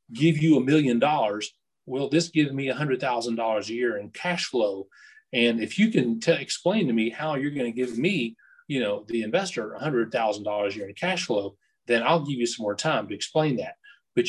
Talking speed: 205 wpm